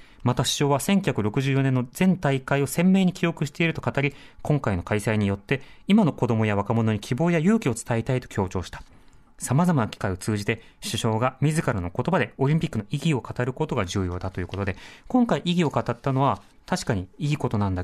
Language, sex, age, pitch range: Japanese, male, 30-49, 110-165 Hz